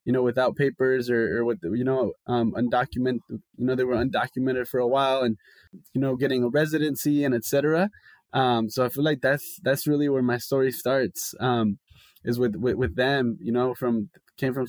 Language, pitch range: English, 125-150 Hz